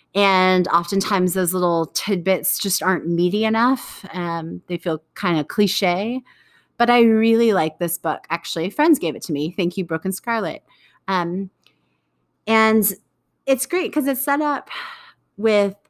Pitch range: 175-215 Hz